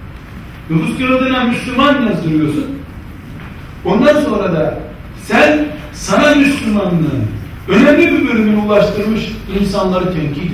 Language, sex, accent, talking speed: Turkish, male, native, 90 wpm